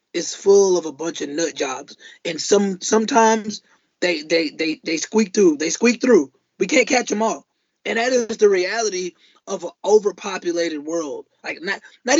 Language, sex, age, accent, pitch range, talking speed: English, male, 20-39, American, 175-260 Hz, 180 wpm